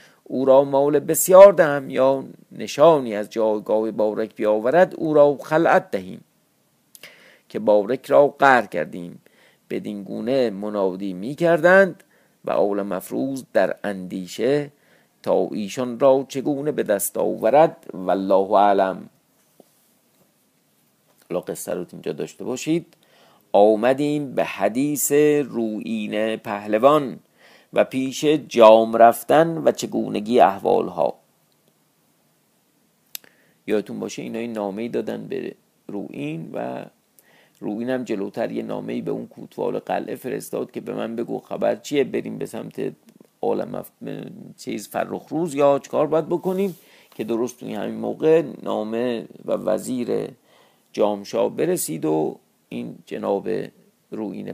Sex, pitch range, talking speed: male, 105-145 Hz, 120 wpm